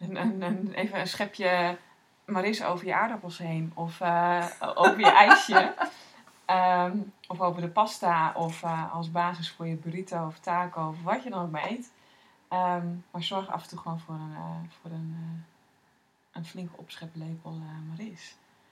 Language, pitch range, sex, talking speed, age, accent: Dutch, 165-180 Hz, female, 145 wpm, 20-39, Dutch